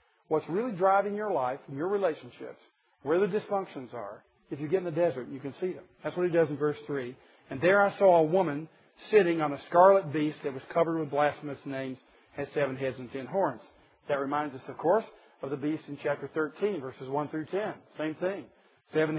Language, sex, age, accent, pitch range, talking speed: English, male, 50-69, American, 150-195 Hz, 220 wpm